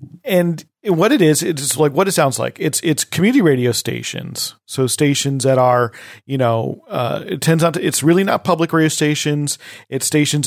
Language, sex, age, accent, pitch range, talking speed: English, male, 40-59, American, 130-165 Hz, 195 wpm